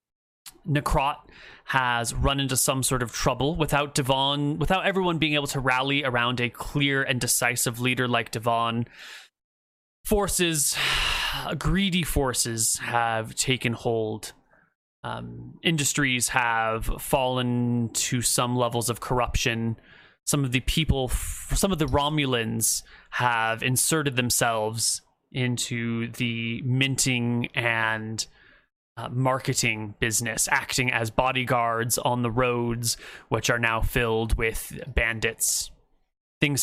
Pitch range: 115-135 Hz